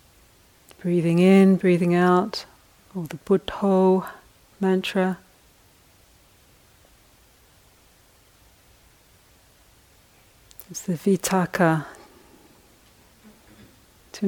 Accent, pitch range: British, 115-190 Hz